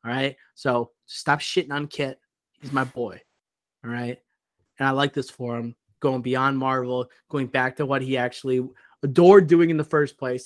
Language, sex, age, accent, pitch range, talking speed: English, male, 30-49, American, 130-160 Hz, 190 wpm